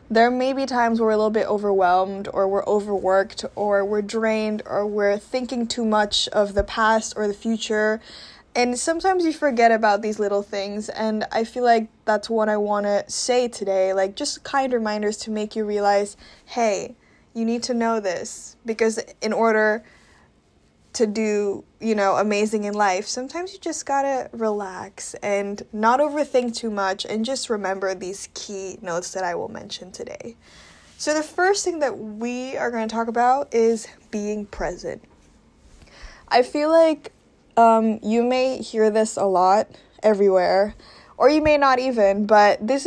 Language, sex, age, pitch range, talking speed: English, female, 10-29, 205-240 Hz, 170 wpm